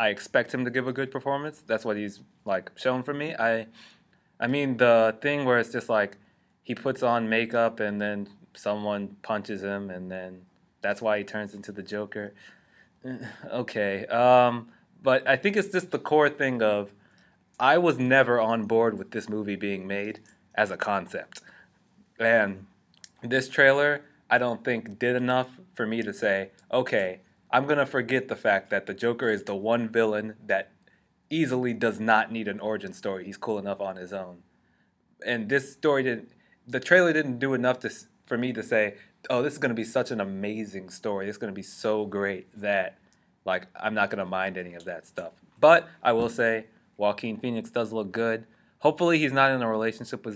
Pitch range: 100-125 Hz